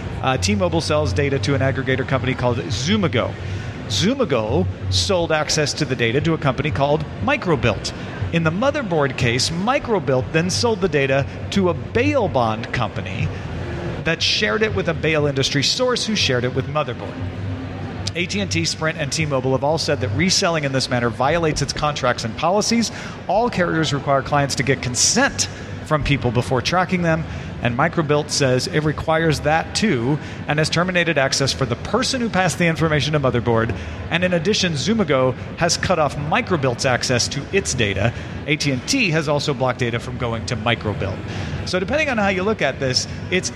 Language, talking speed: English, 175 wpm